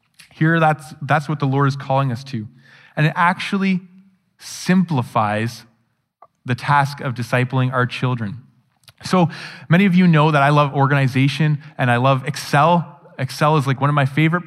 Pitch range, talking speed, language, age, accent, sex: 140-180 Hz, 165 wpm, English, 20-39, American, male